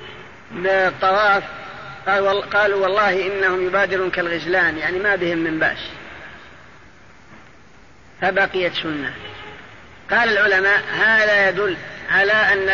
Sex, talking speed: female, 90 wpm